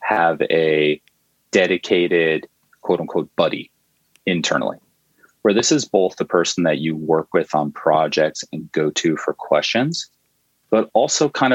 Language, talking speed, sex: English, 135 wpm, male